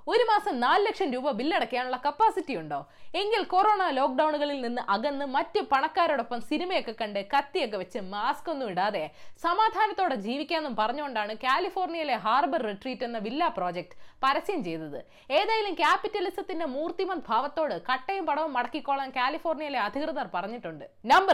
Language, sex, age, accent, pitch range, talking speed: Malayalam, female, 20-39, native, 220-345 Hz, 125 wpm